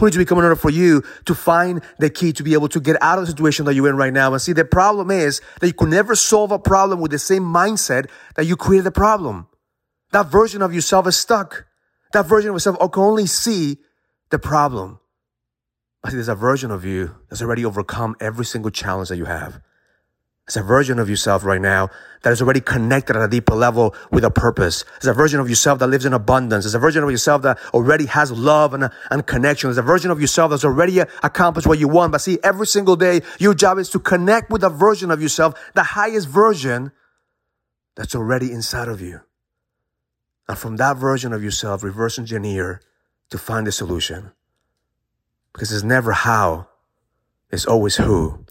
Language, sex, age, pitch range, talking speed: English, male, 30-49, 115-175 Hz, 210 wpm